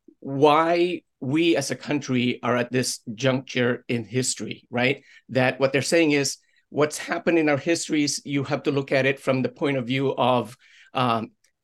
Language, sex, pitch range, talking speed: English, male, 130-155 Hz, 180 wpm